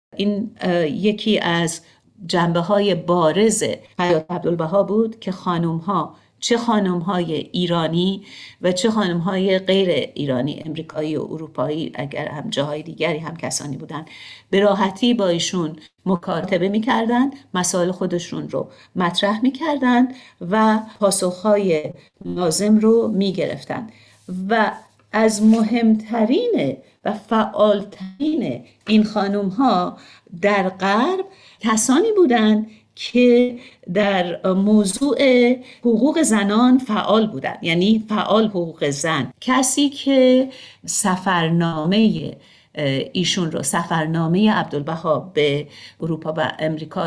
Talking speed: 105 wpm